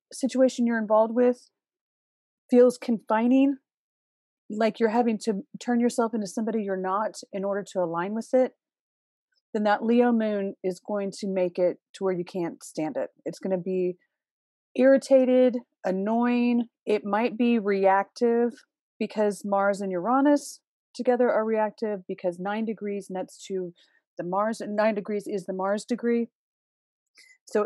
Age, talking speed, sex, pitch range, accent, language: 30-49, 150 wpm, female, 195-235 Hz, American, English